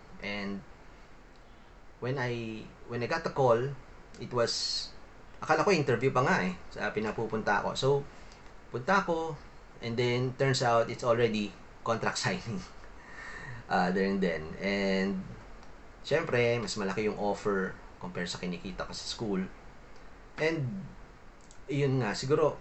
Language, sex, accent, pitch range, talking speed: English, male, Filipino, 100-135 Hz, 135 wpm